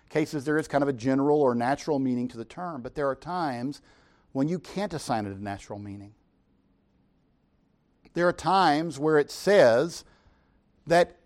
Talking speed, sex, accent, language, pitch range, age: 170 wpm, male, American, English, 105-165 Hz, 50-69